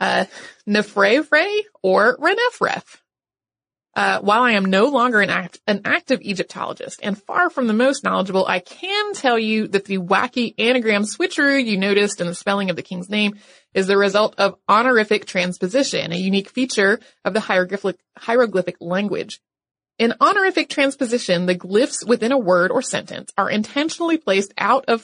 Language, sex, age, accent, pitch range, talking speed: English, female, 30-49, American, 195-260 Hz, 165 wpm